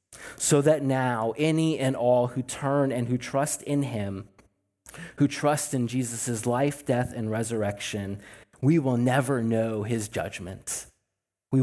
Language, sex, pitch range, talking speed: English, male, 105-130 Hz, 145 wpm